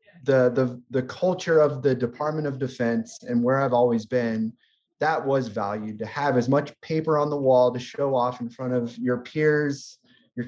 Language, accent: English, American